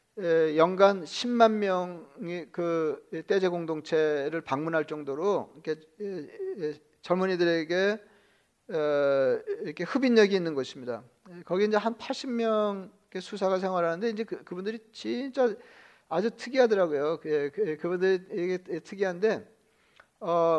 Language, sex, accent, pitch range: Korean, male, native, 165-215 Hz